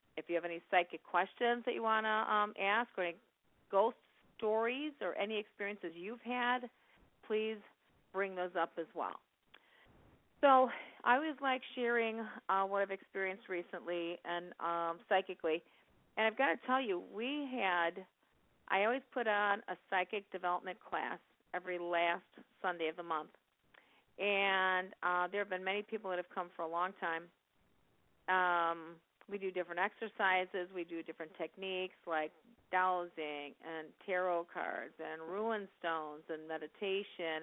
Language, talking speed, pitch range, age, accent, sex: English, 150 wpm, 170-210 Hz, 40-59, American, female